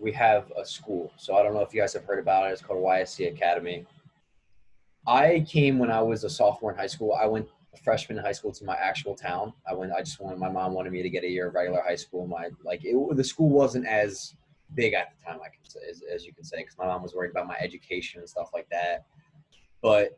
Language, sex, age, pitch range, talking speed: English, male, 20-39, 95-125 Hz, 265 wpm